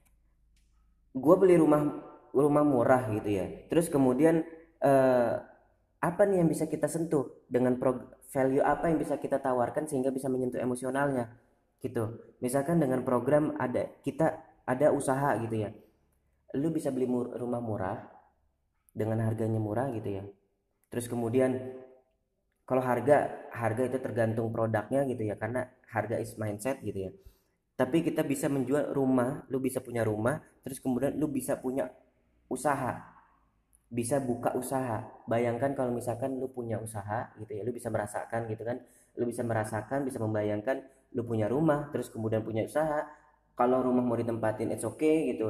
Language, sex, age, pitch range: Indonesian, female, 20-39, 110-140 Hz